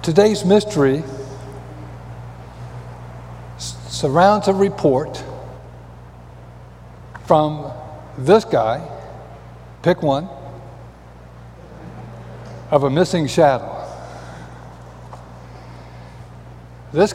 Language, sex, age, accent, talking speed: English, male, 60-79, American, 50 wpm